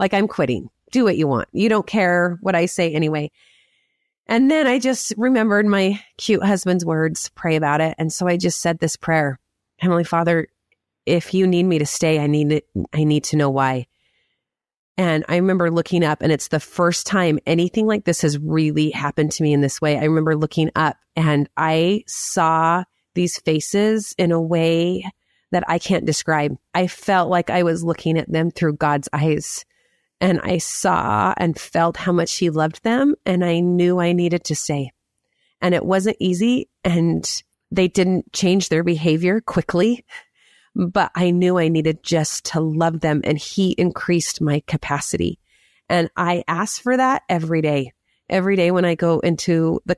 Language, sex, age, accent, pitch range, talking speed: English, female, 30-49, American, 155-185 Hz, 185 wpm